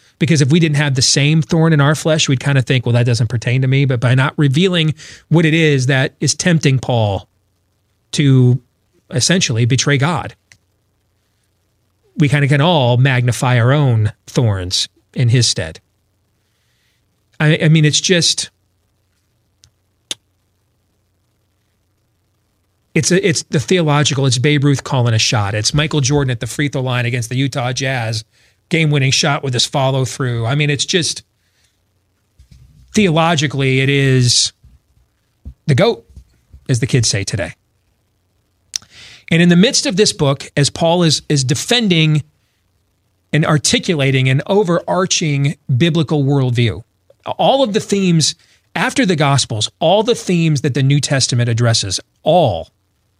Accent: American